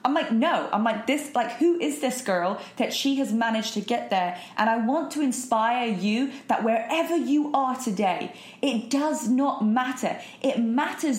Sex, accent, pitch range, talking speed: female, British, 210-270 Hz, 190 wpm